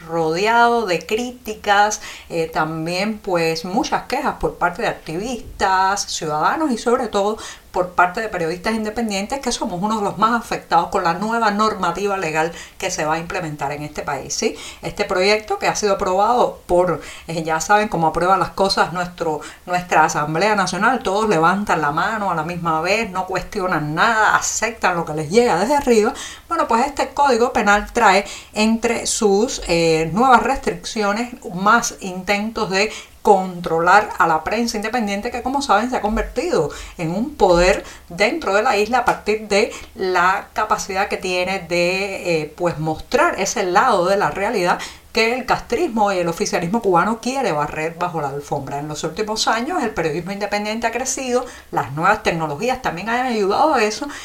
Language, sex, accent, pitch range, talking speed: Spanish, female, American, 175-225 Hz, 170 wpm